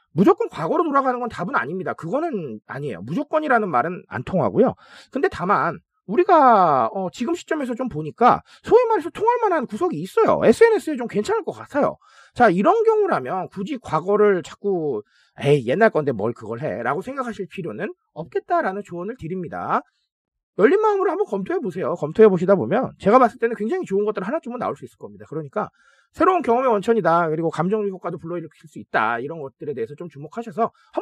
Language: Korean